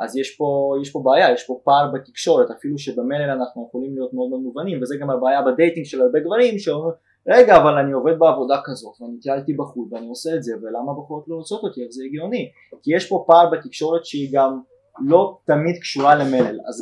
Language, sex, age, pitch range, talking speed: Hebrew, male, 20-39, 135-175 Hz, 205 wpm